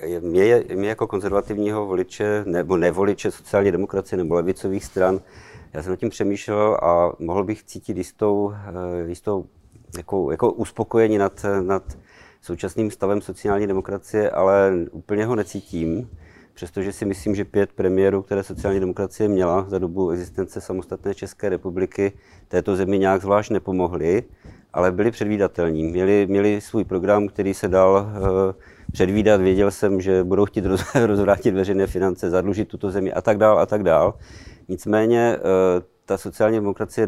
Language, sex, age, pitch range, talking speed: Czech, male, 50-69, 95-105 Hz, 145 wpm